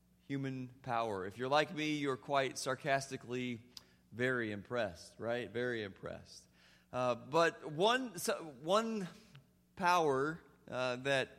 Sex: male